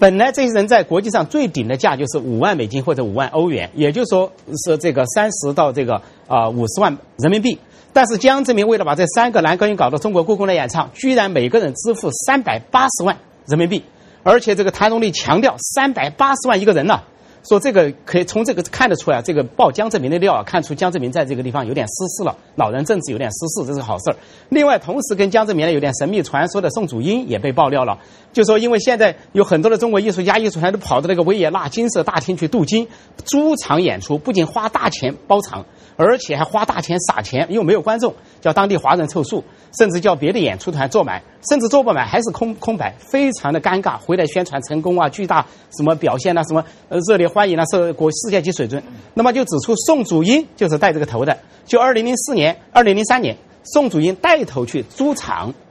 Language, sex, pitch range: English, male, 160-230 Hz